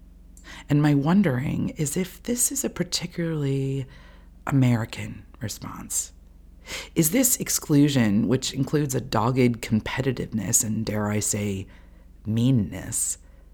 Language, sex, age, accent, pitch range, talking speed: English, female, 40-59, American, 95-140 Hz, 105 wpm